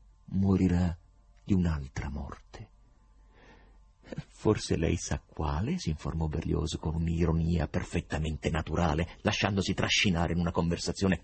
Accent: native